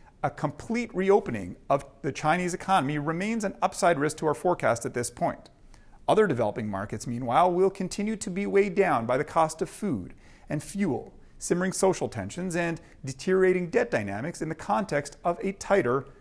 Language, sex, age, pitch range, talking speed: English, male, 40-59, 140-195 Hz, 175 wpm